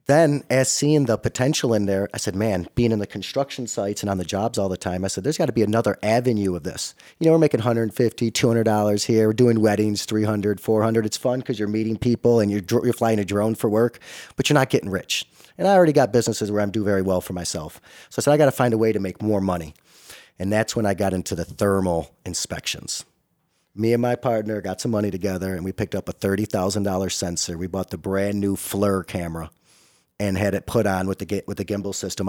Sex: male